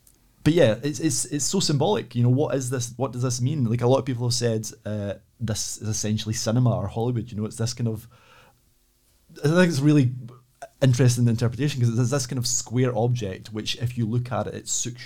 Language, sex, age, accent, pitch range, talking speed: English, male, 30-49, British, 105-125 Hz, 230 wpm